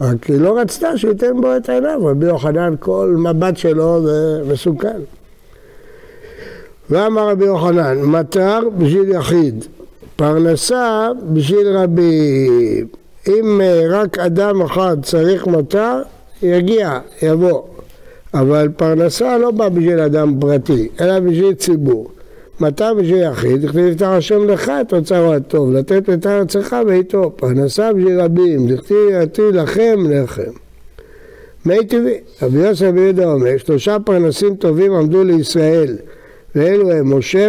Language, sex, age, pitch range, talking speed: Hebrew, male, 60-79, 155-205 Hz, 125 wpm